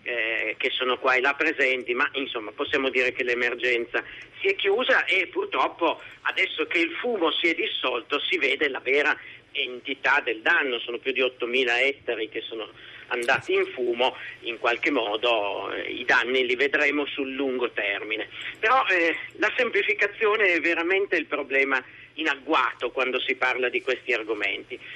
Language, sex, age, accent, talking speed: Italian, male, 50-69, native, 165 wpm